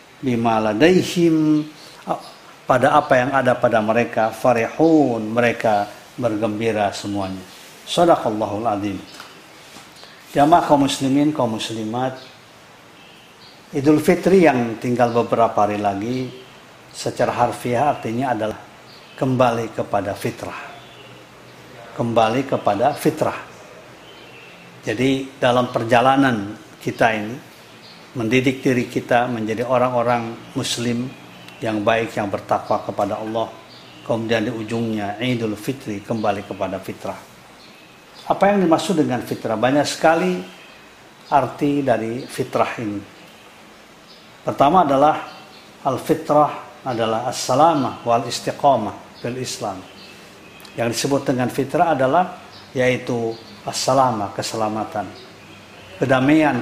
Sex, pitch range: male, 110-140 Hz